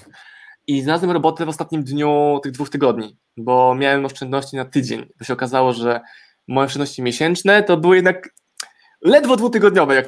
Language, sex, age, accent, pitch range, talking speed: Polish, male, 20-39, native, 120-150 Hz, 160 wpm